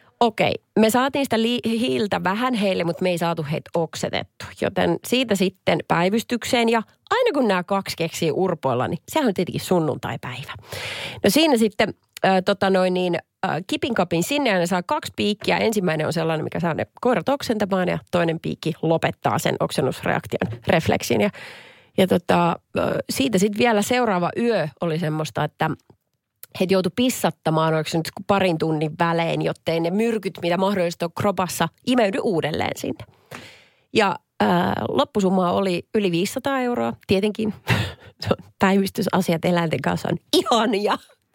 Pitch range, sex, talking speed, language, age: 170-230 Hz, female, 150 wpm, Finnish, 30-49